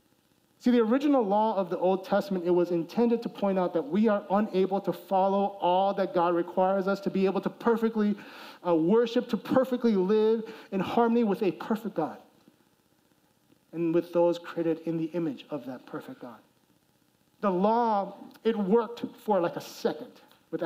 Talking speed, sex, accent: 175 wpm, male, American